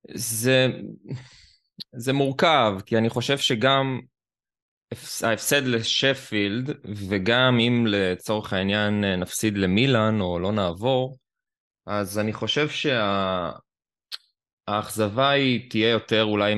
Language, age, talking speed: Hebrew, 20-39, 100 wpm